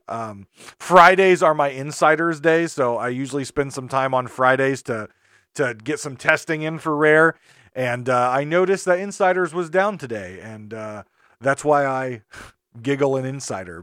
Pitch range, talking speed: 135-195 Hz, 170 wpm